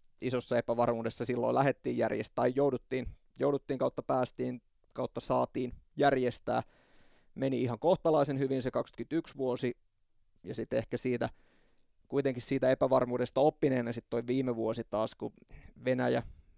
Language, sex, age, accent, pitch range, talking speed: Finnish, male, 30-49, native, 120-140 Hz, 130 wpm